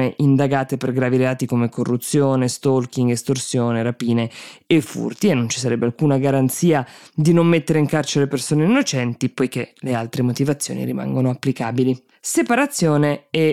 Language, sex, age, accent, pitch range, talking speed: Italian, female, 20-39, native, 130-160 Hz, 140 wpm